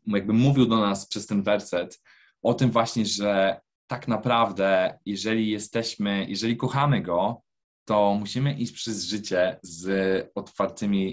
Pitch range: 100-115 Hz